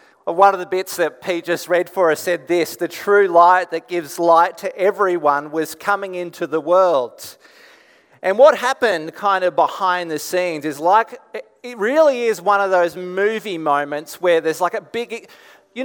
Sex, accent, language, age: male, Australian, English, 30-49